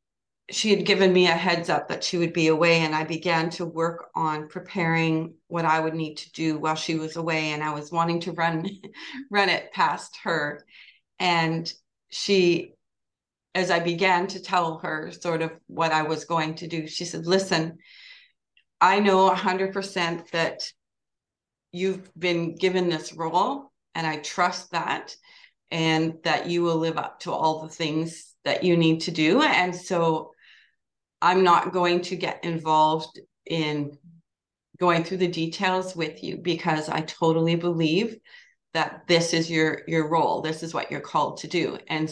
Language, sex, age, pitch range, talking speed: English, female, 40-59, 160-185 Hz, 170 wpm